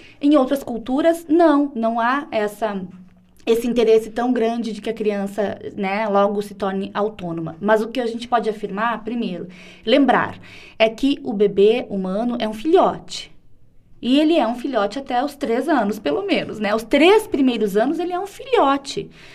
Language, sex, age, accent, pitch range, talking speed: Portuguese, female, 20-39, Brazilian, 210-290 Hz, 175 wpm